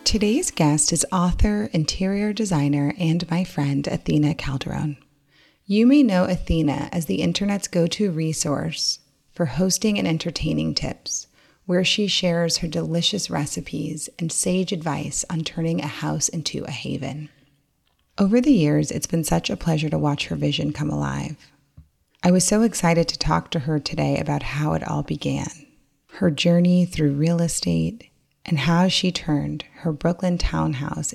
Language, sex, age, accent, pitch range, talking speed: English, female, 30-49, American, 145-175 Hz, 155 wpm